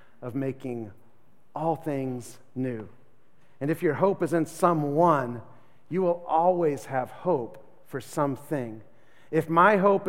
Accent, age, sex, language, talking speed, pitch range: American, 40-59, male, English, 130 wpm, 130-160 Hz